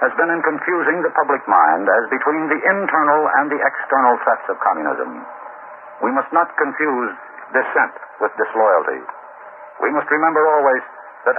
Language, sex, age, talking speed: English, male, 60-79, 155 wpm